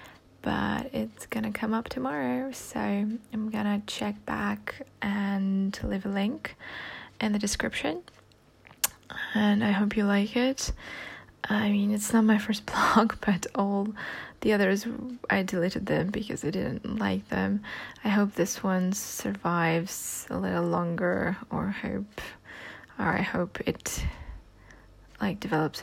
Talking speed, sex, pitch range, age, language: 135 wpm, female, 185-225 Hz, 20-39, English